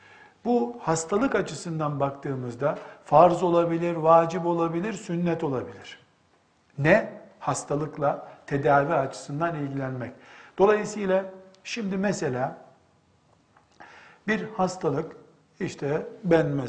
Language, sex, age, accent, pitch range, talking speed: Turkish, male, 60-79, native, 140-190 Hz, 80 wpm